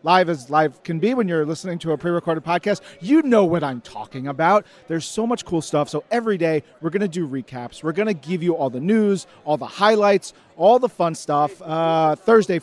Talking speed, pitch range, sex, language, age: 235 wpm, 155-190 Hz, male, English, 40-59